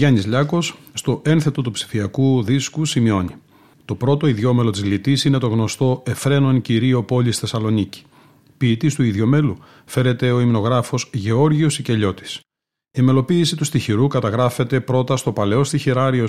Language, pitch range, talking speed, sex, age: Greek, 115-140 Hz, 135 wpm, male, 40-59